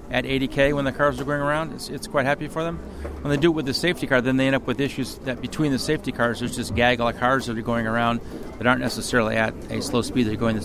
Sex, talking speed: male, 295 wpm